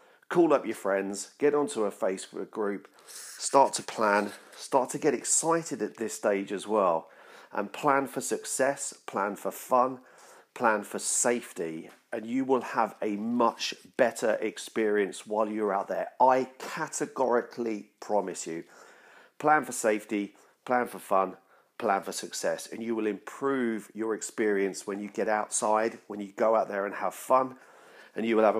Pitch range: 105-130 Hz